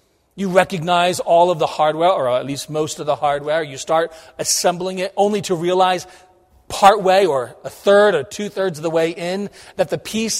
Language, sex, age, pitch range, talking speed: English, male, 40-59, 145-190 Hz, 200 wpm